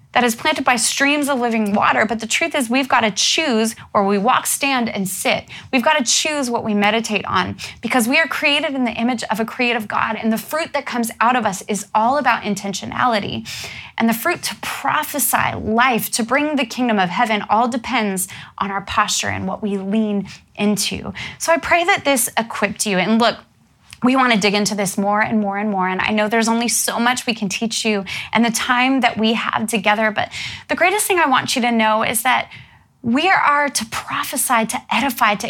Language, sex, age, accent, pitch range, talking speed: English, female, 20-39, American, 205-250 Hz, 215 wpm